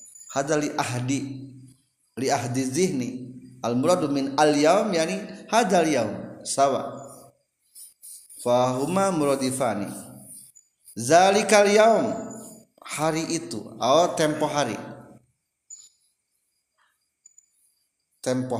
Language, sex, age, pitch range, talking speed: Indonesian, male, 50-69, 125-165 Hz, 70 wpm